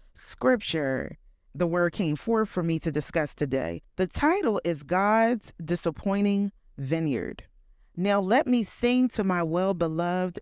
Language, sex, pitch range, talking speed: English, female, 165-205 Hz, 140 wpm